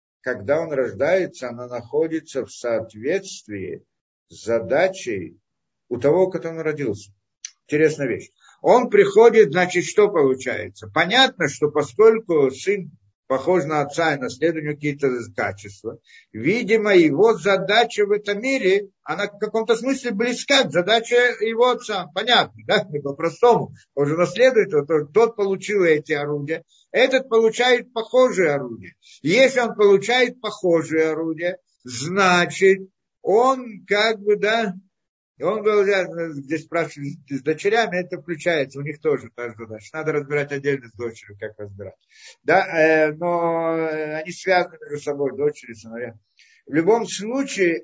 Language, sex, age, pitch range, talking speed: Russian, male, 50-69, 145-215 Hz, 130 wpm